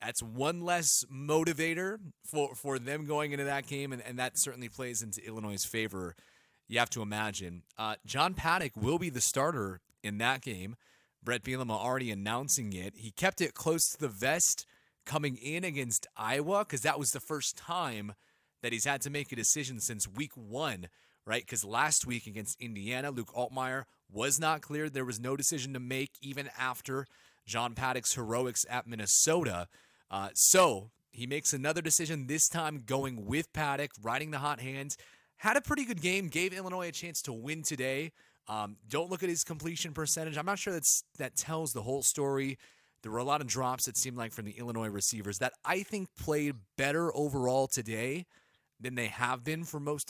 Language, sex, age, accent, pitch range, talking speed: English, male, 30-49, American, 115-155 Hz, 190 wpm